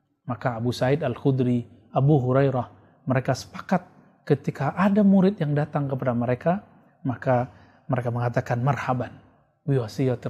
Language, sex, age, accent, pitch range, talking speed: Indonesian, male, 30-49, native, 130-170 Hz, 115 wpm